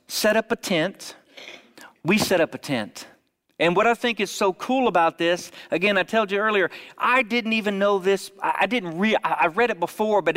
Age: 40-59